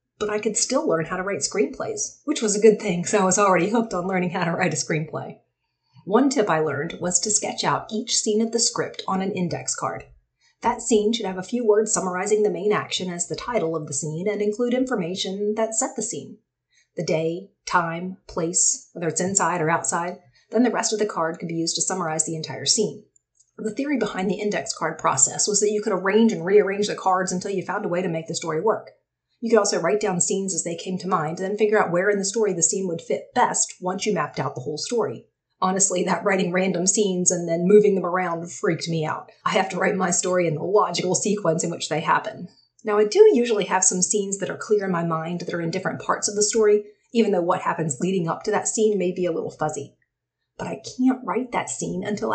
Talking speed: 250 wpm